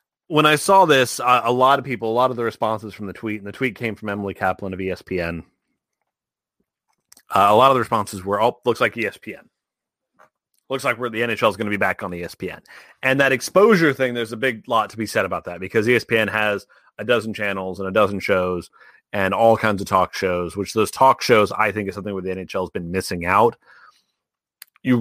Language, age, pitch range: English, 30-49, 100-130 Hz